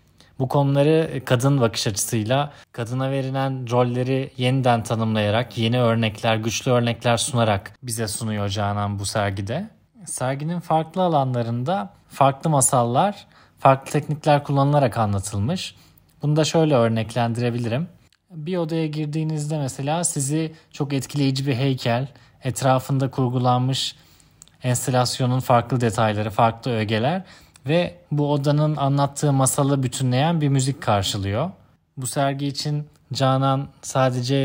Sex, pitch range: male, 120-150 Hz